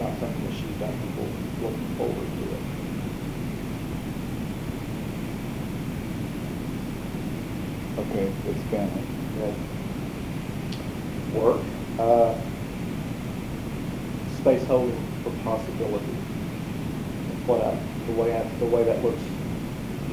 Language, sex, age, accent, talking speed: English, male, 40-59, American, 70 wpm